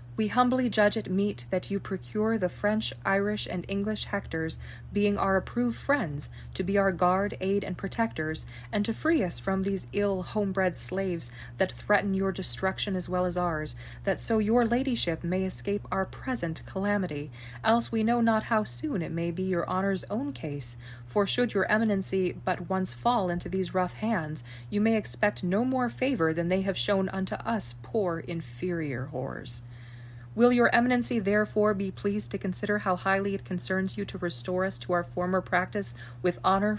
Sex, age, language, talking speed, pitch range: female, 20-39, English, 185 wpm, 150-205 Hz